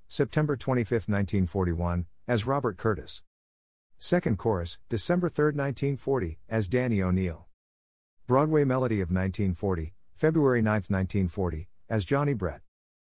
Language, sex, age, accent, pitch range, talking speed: English, male, 50-69, American, 85-120 Hz, 110 wpm